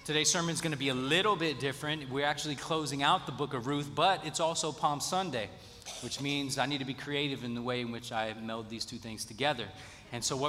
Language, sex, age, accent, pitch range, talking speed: English, male, 30-49, American, 115-140 Hz, 250 wpm